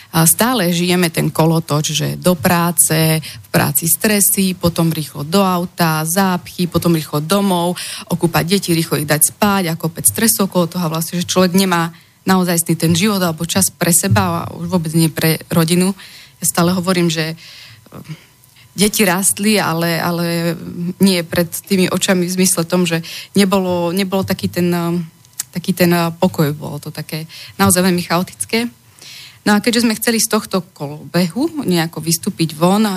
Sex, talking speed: female, 160 wpm